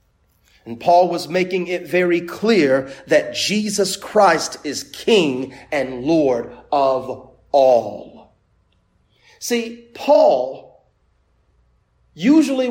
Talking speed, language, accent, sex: 90 wpm, English, American, male